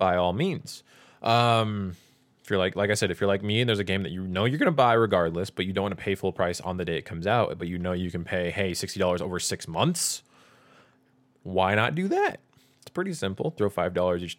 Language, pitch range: English, 90-115 Hz